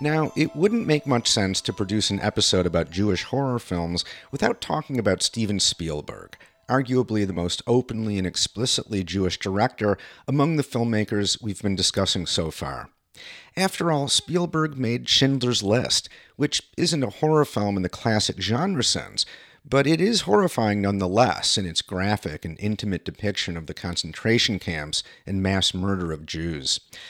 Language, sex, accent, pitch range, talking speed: English, male, American, 95-135 Hz, 155 wpm